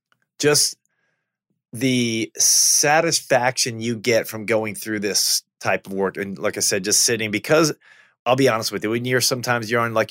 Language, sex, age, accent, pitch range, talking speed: English, male, 20-39, American, 105-135 Hz, 180 wpm